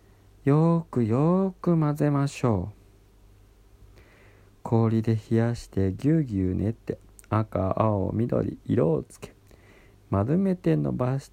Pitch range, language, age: 95-130 Hz, Japanese, 50-69